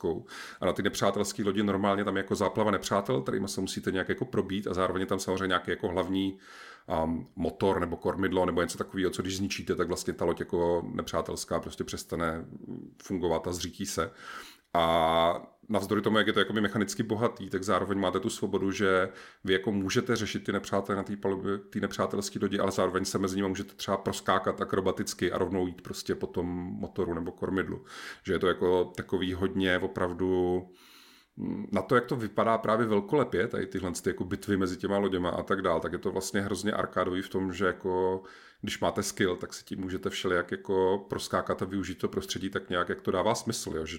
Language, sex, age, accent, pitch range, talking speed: Czech, male, 40-59, native, 90-100 Hz, 200 wpm